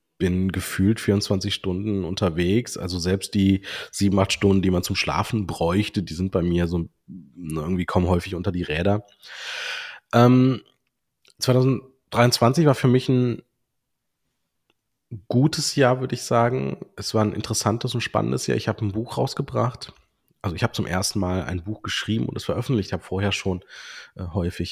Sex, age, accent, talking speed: male, 30-49, German, 165 wpm